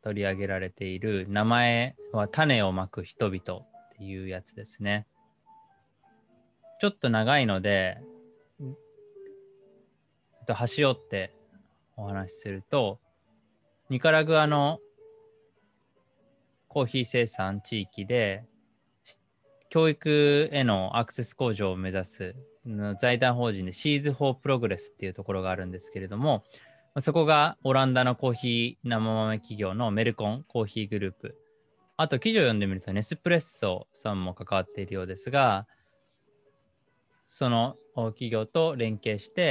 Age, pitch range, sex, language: 20-39, 100-140 Hz, male, Japanese